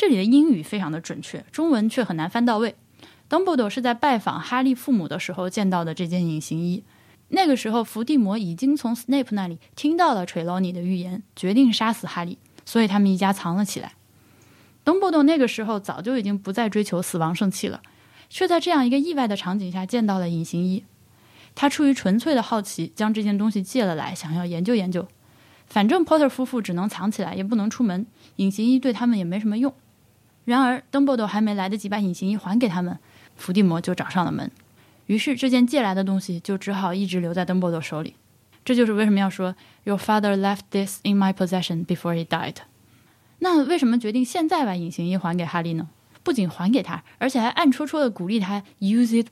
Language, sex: Chinese, female